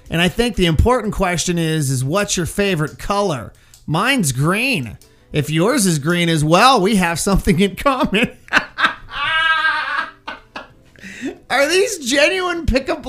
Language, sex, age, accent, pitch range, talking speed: English, male, 30-49, American, 155-245 Hz, 135 wpm